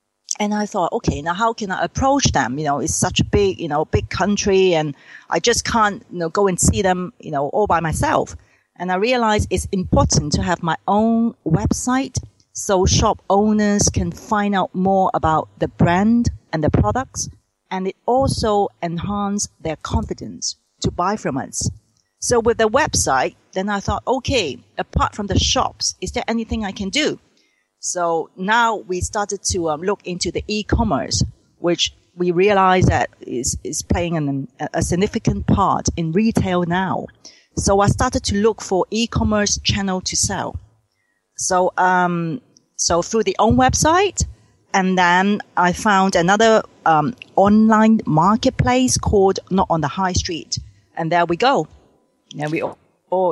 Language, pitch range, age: English, 170-210 Hz, 40-59